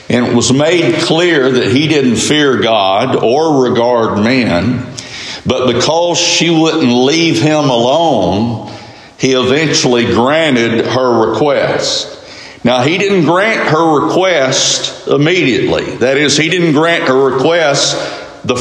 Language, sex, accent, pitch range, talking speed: English, male, American, 125-170 Hz, 130 wpm